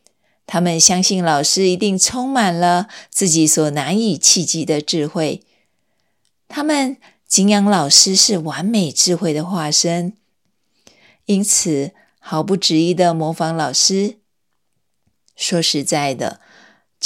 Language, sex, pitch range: Chinese, female, 160-205 Hz